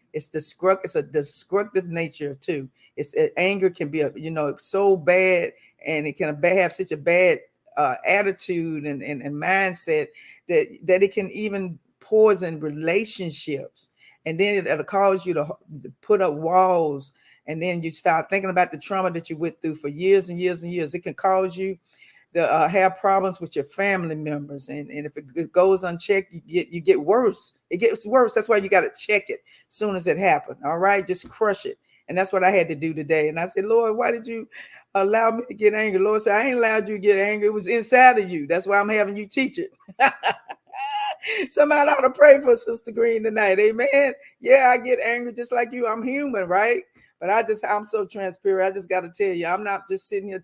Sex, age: female, 50-69